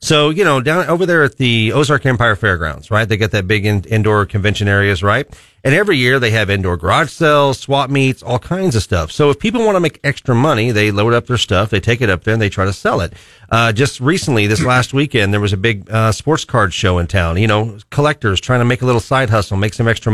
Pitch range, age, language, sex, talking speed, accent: 110-140 Hz, 40-59, English, male, 260 wpm, American